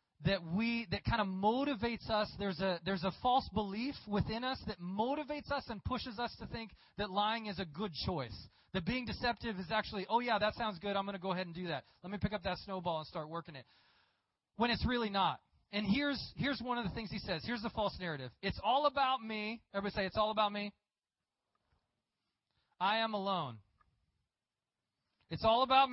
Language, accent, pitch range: English, American, 200-265 Hz